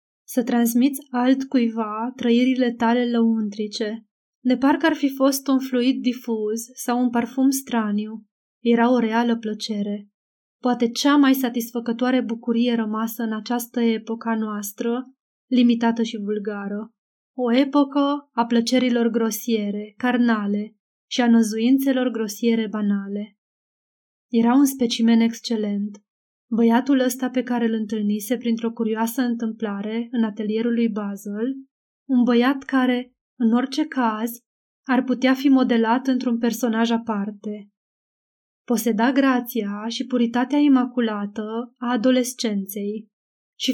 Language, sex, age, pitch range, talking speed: Romanian, female, 20-39, 220-250 Hz, 115 wpm